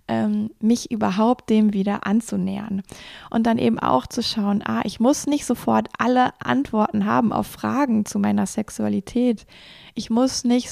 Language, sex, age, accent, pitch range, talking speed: German, female, 20-39, German, 205-235 Hz, 150 wpm